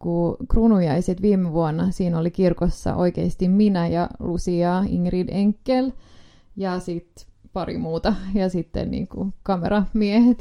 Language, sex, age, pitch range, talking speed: Finnish, female, 20-39, 170-205 Hz, 120 wpm